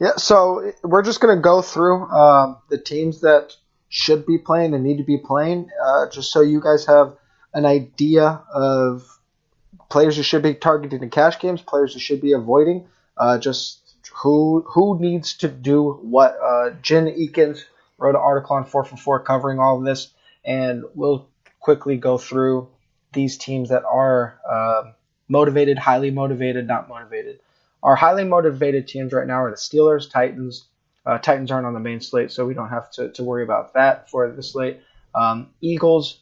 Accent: American